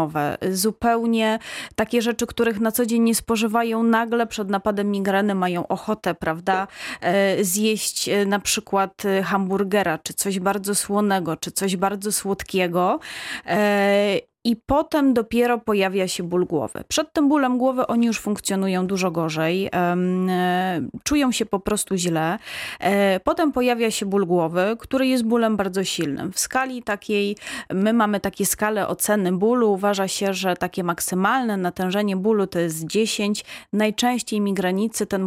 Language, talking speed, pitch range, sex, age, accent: Polish, 140 wpm, 190-225 Hz, female, 30-49, native